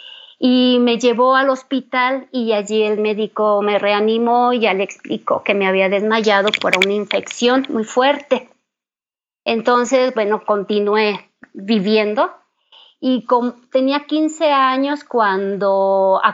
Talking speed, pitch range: 125 wpm, 215-260 Hz